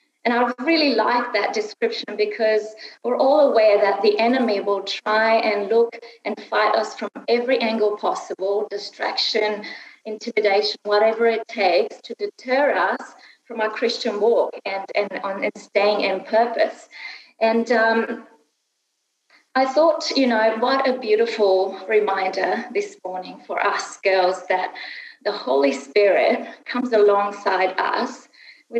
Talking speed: 135 wpm